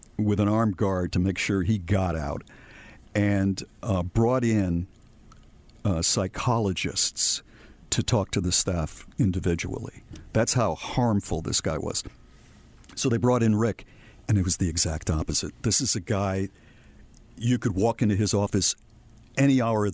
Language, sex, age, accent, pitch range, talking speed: English, male, 50-69, American, 95-120 Hz, 155 wpm